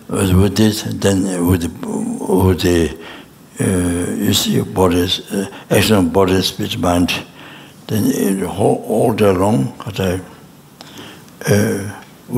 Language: English